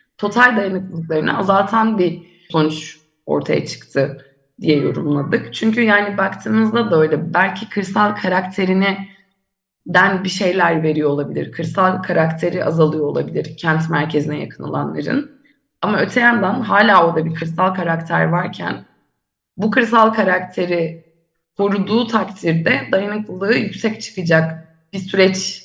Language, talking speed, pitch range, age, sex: Turkish, 110 wpm, 160-195 Hz, 30-49, female